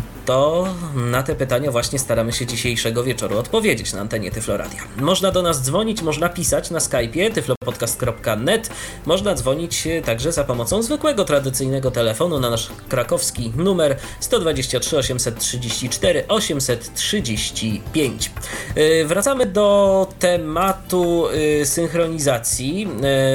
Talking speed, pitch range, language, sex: 105 wpm, 120-160 Hz, Polish, male